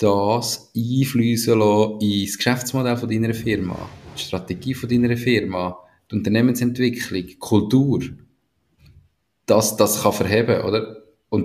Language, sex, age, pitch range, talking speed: German, male, 20-39, 95-115 Hz, 110 wpm